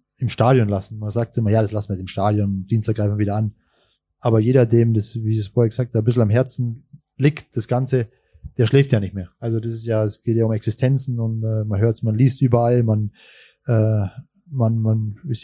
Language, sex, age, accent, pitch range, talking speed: German, male, 20-39, German, 115-135 Hz, 240 wpm